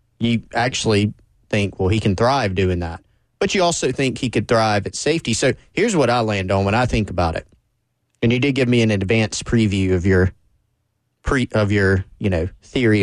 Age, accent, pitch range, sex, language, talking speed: 30-49, American, 100-120 Hz, male, English, 205 wpm